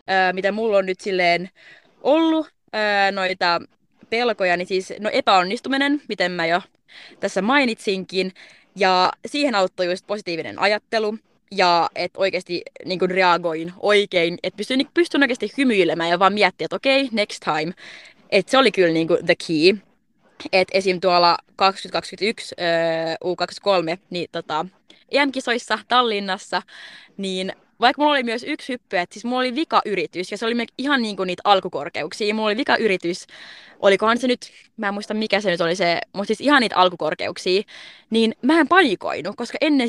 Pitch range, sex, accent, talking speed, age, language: 175-230 Hz, female, native, 150 wpm, 20-39, Finnish